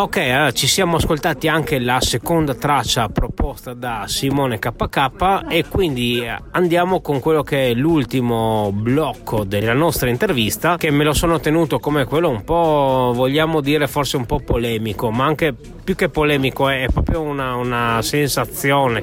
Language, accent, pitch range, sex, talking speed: Italian, native, 125-150 Hz, male, 160 wpm